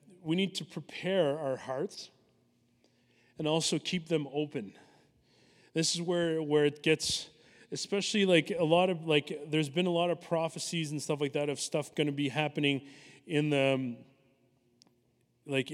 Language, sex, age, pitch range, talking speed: English, male, 30-49, 145-170 Hz, 160 wpm